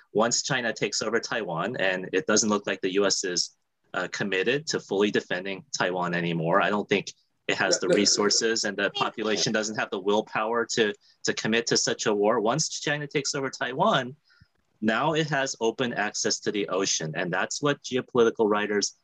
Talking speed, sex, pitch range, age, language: 185 wpm, male, 105-140 Hz, 30-49, English